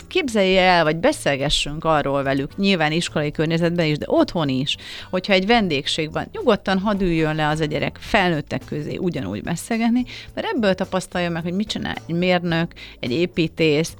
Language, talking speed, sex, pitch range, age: Hungarian, 160 wpm, female, 155-195 Hz, 30-49